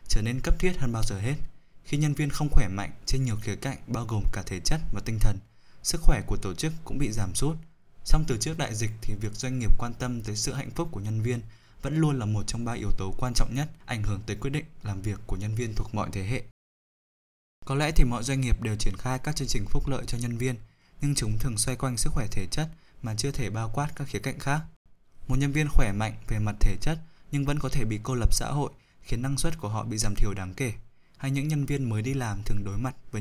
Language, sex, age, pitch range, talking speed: Vietnamese, male, 20-39, 105-135 Hz, 275 wpm